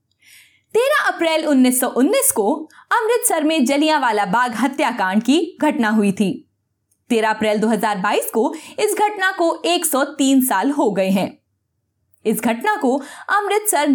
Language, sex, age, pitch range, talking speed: Hindi, female, 20-39, 210-335 Hz, 125 wpm